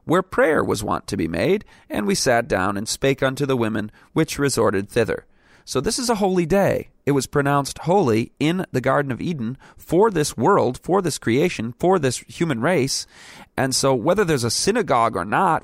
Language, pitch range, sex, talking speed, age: English, 115-150 Hz, male, 200 wpm, 30-49